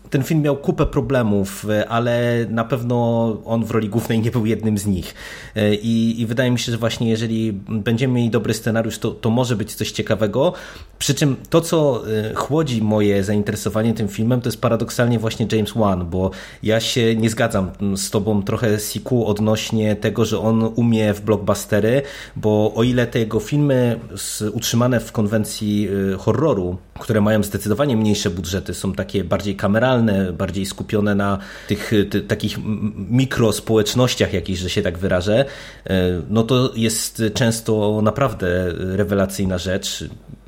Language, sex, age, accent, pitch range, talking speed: Polish, male, 30-49, native, 105-120 Hz, 155 wpm